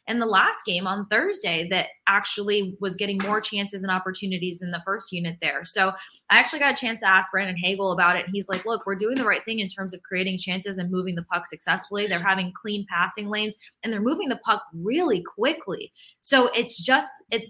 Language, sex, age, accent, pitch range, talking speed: English, female, 20-39, American, 185-220 Hz, 225 wpm